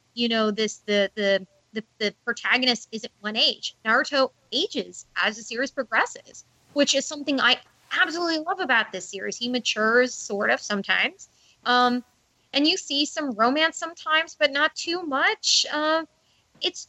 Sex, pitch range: female, 195-265 Hz